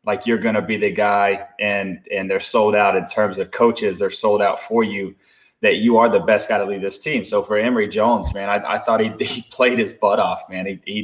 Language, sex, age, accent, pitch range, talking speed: English, male, 20-39, American, 105-135 Hz, 260 wpm